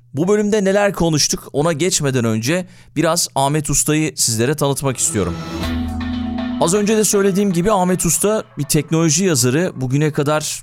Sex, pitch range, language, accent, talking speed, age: male, 115-150 Hz, Turkish, native, 140 wpm, 40-59